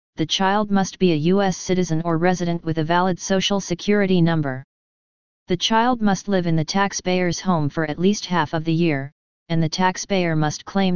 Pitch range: 165-190 Hz